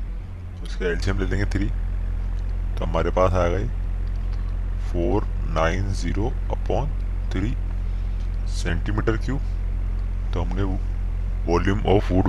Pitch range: 90-95 Hz